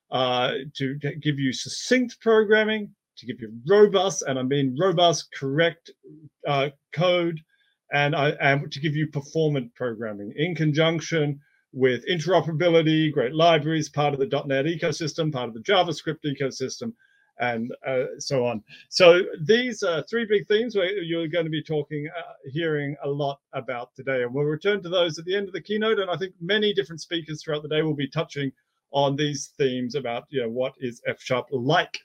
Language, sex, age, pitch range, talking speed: English, male, 40-59, 140-215 Hz, 180 wpm